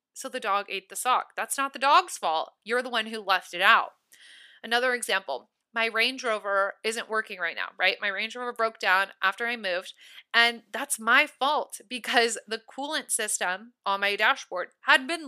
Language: English